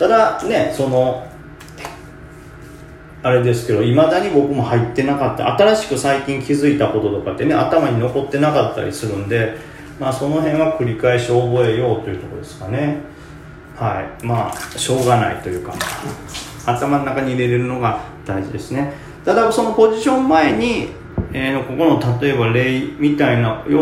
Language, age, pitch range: Japanese, 30-49, 105-140 Hz